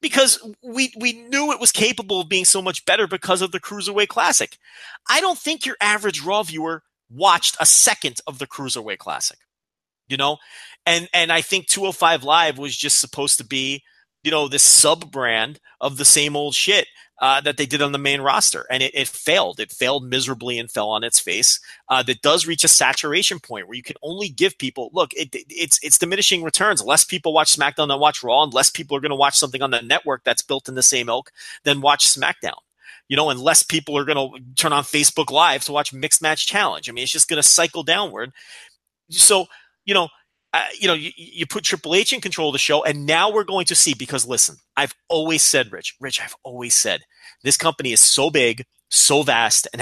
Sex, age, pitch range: male, 30-49, 135-175 Hz